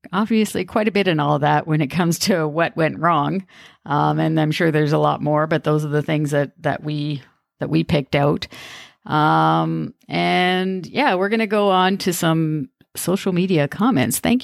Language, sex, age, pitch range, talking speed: English, female, 40-59, 150-195 Hz, 200 wpm